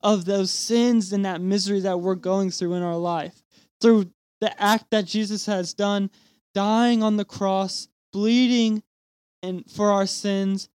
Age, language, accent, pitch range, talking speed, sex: 20-39, English, American, 185-225 Hz, 160 wpm, male